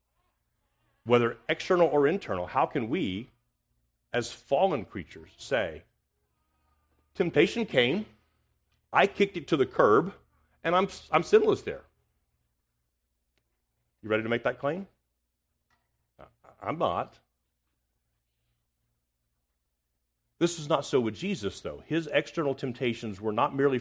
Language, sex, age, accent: English, male, 40-59, American